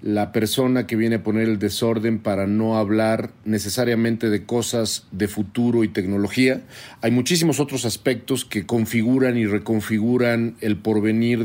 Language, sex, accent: Spanish, male, Mexican